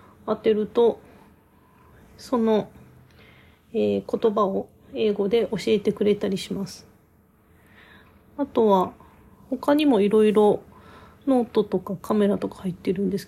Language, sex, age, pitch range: Japanese, female, 40-59, 185-230 Hz